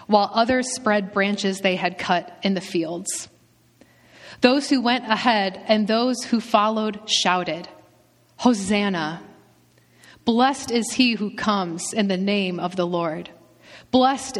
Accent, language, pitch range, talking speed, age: American, English, 175-225 Hz, 135 wpm, 30-49